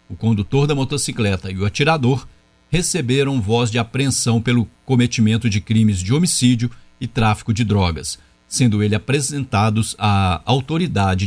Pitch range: 110-140 Hz